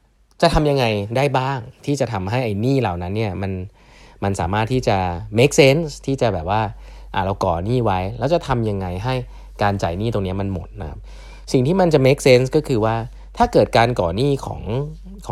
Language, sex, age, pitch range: Thai, male, 20-39, 95-130 Hz